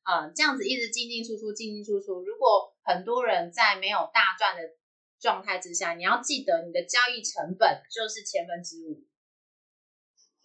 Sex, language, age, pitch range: female, Chinese, 30-49, 180-285 Hz